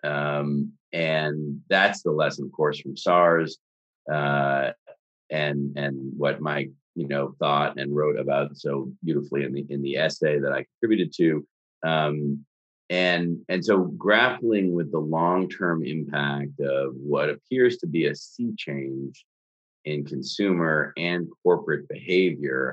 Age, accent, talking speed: 40-59, American, 145 wpm